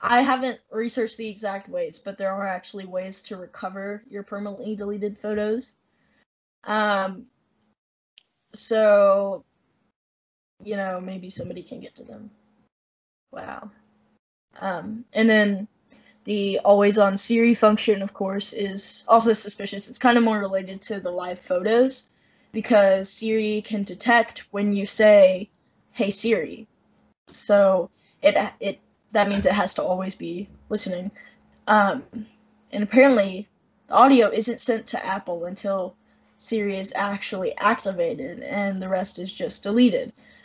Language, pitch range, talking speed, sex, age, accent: English, 195-225 Hz, 135 wpm, female, 10-29, American